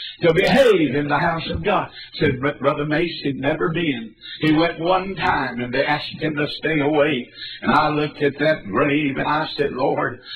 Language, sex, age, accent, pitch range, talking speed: English, male, 60-79, American, 140-165 Hz, 205 wpm